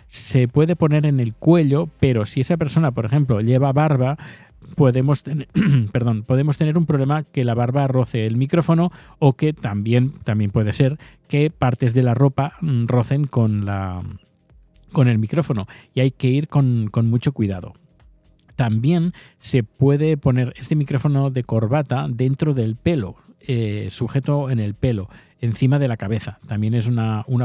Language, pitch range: Spanish, 110-145 Hz